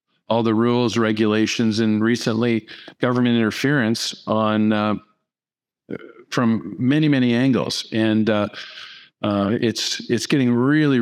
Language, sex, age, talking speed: English, male, 50-69, 115 wpm